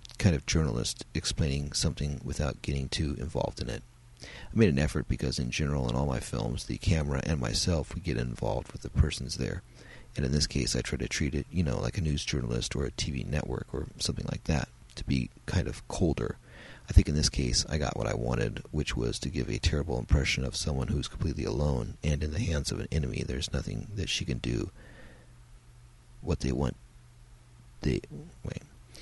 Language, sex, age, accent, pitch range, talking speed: English, male, 40-59, American, 65-85 Hz, 210 wpm